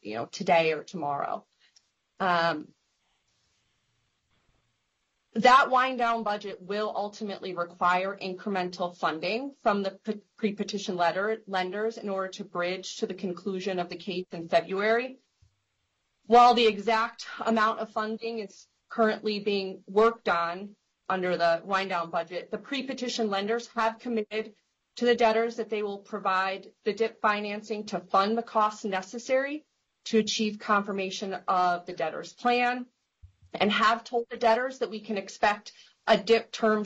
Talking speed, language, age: 140 wpm, English, 30-49